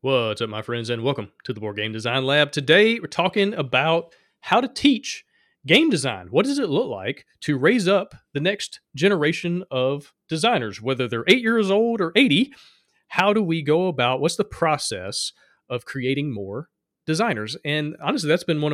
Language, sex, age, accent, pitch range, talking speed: English, male, 30-49, American, 130-175 Hz, 185 wpm